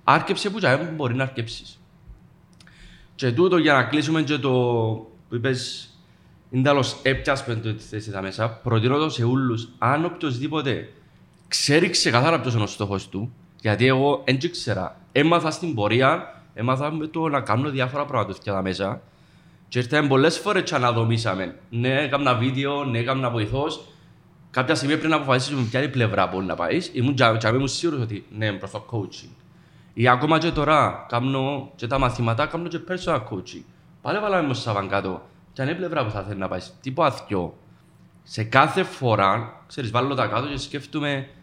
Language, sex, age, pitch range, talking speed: Greek, male, 30-49, 110-145 Hz, 170 wpm